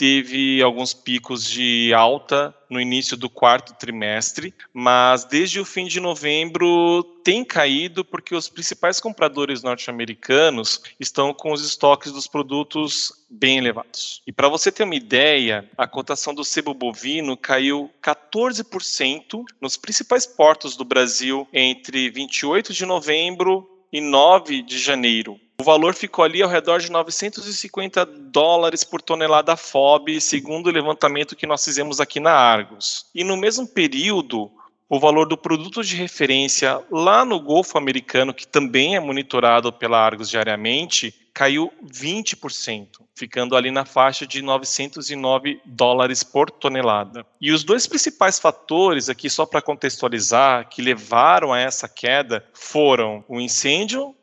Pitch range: 125-170 Hz